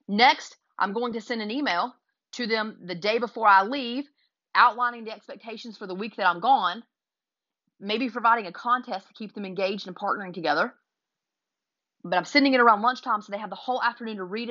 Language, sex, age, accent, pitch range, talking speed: English, female, 30-49, American, 190-245 Hz, 200 wpm